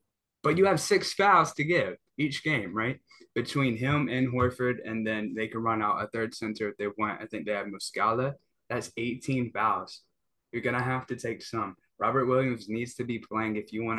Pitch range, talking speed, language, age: 110-145 Hz, 215 wpm, English, 10-29